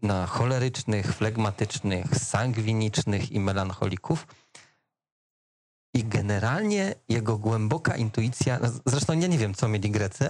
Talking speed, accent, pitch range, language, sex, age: 105 wpm, native, 110-140 Hz, Polish, male, 40-59